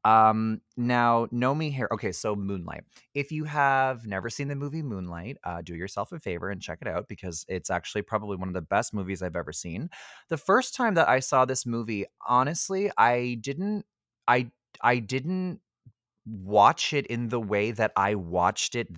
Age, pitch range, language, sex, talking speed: 30-49, 100-125 Hz, English, male, 190 wpm